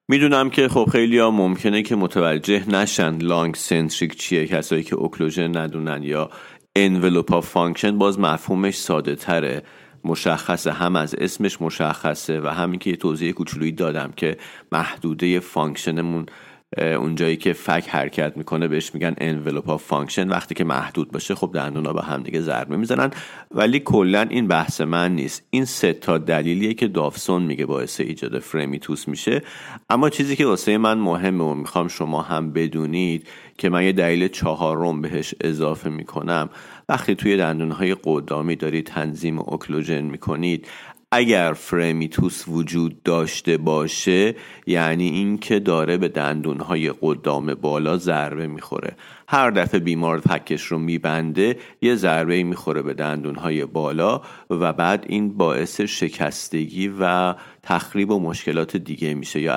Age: 40-59